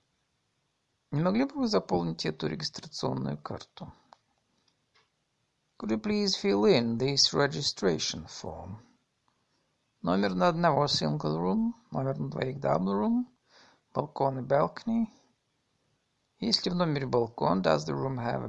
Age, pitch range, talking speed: 50-69, 110-170 Hz, 120 wpm